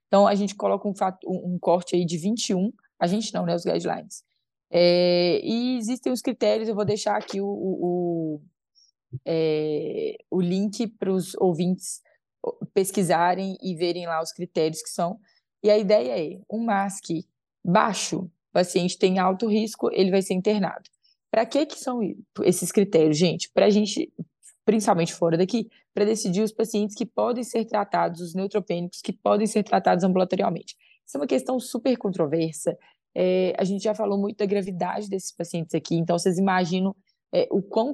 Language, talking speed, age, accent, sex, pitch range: English, 170 wpm, 20-39, Brazilian, female, 180-225 Hz